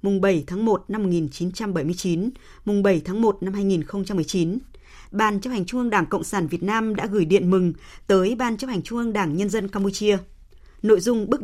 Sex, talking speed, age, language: female, 205 wpm, 20-39, Vietnamese